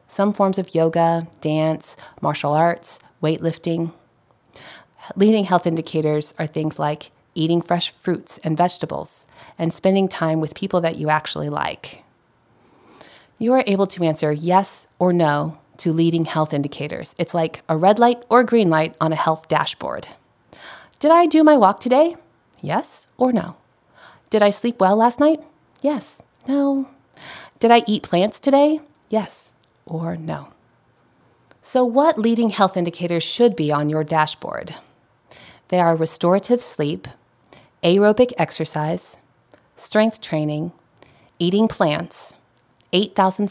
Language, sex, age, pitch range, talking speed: English, female, 30-49, 160-215 Hz, 135 wpm